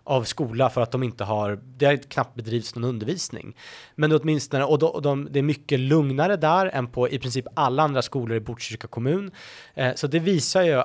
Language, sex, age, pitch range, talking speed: Swedish, male, 30-49, 115-145 Hz, 215 wpm